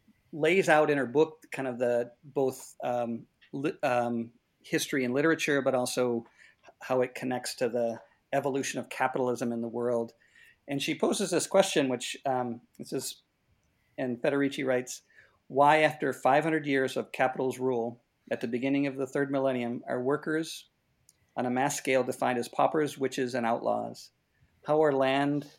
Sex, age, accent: male, 50-69, American